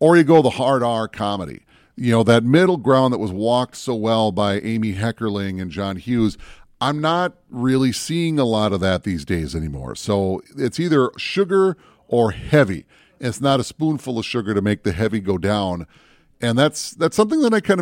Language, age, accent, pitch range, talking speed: English, 30-49, American, 105-145 Hz, 200 wpm